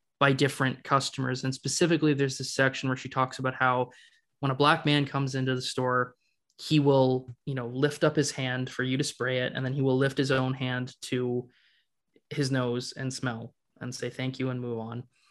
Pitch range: 130-150 Hz